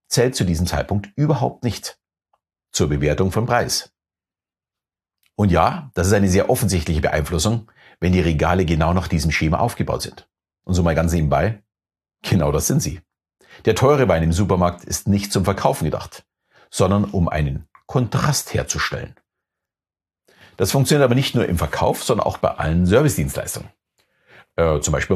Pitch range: 85-110 Hz